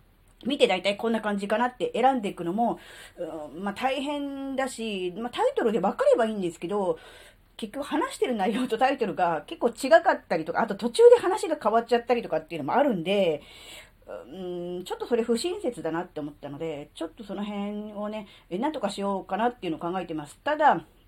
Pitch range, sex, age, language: 165-250 Hz, female, 40-59, Japanese